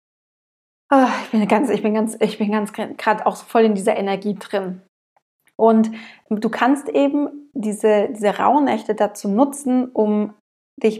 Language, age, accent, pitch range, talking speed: German, 20-39, German, 205-235 Hz, 145 wpm